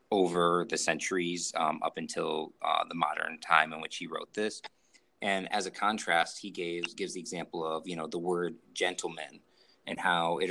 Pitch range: 85-95 Hz